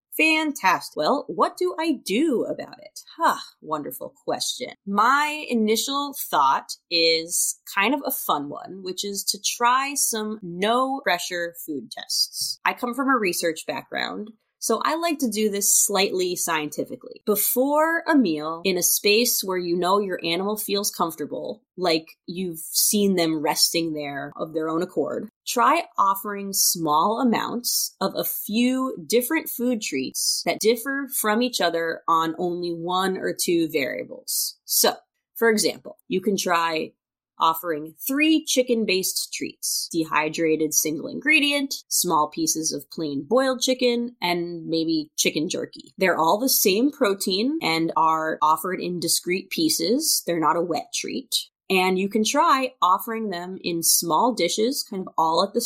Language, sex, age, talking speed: English, female, 30-49, 150 wpm